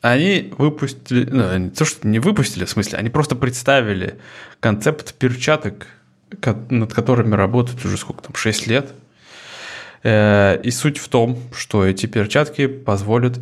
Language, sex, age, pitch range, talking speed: Russian, male, 20-39, 105-130 Hz, 135 wpm